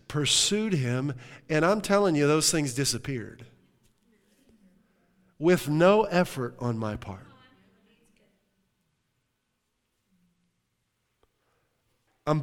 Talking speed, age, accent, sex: 75 wpm, 50-69, American, male